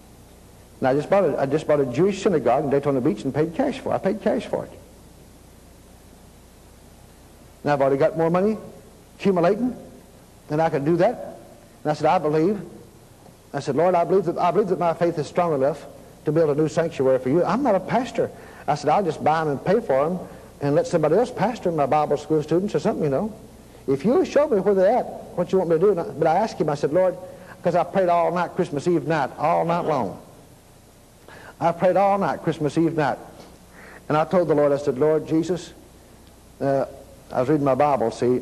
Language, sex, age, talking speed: English, male, 60-79, 225 wpm